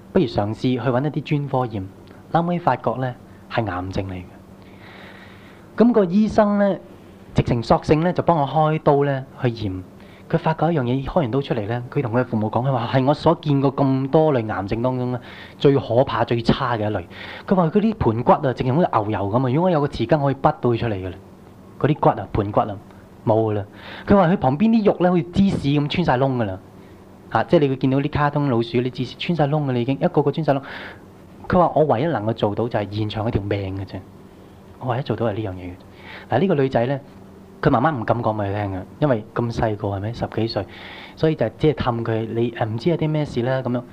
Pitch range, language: 105-150 Hz, Chinese